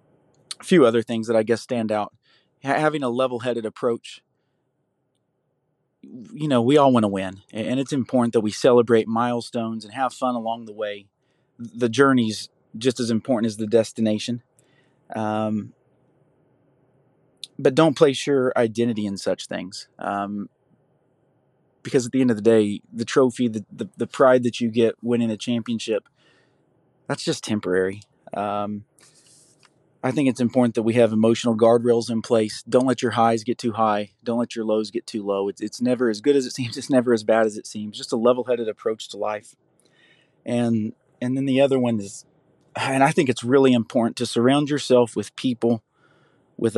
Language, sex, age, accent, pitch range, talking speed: English, male, 30-49, American, 115-130 Hz, 180 wpm